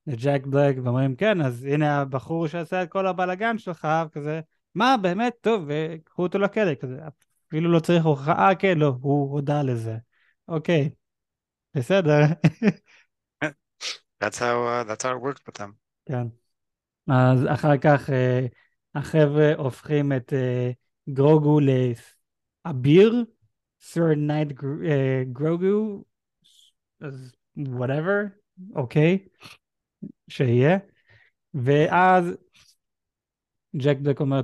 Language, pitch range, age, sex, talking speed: Hebrew, 130-165 Hz, 20-39, male, 100 wpm